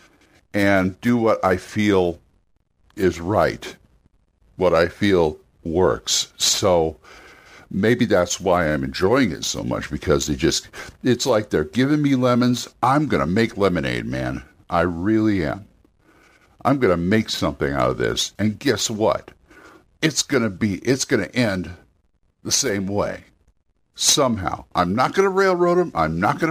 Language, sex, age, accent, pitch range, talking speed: English, male, 60-79, American, 90-135 Hz, 160 wpm